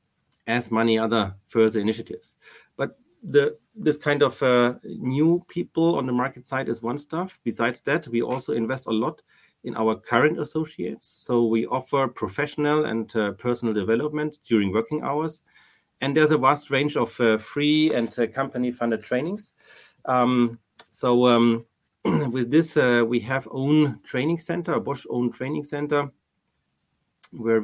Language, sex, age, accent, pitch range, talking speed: Romanian, male, 30-49, German, 115-145 Hz, 150 wpm